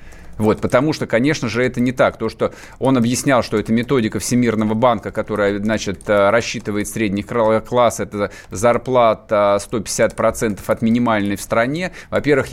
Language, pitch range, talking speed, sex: Russian, 105-140 Hz, 145 wpm, male